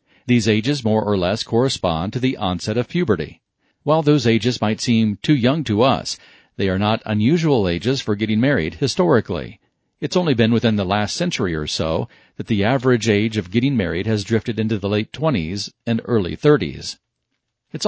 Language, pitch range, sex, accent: English, 105-130 Hz, male, American